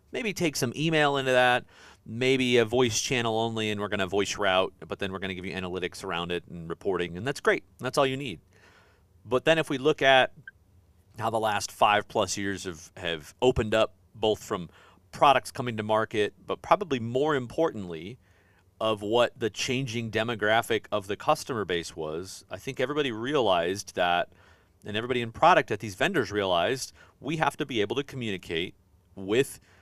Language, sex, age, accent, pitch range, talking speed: English, male, 40-59, American, 100-140 Hz, 185 wpm